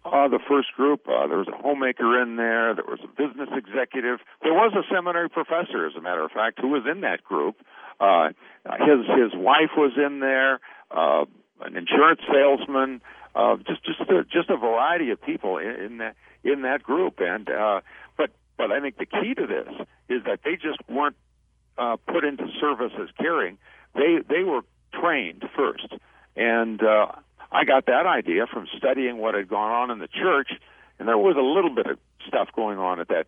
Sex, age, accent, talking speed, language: male, 60-79, American, 200 wpm, English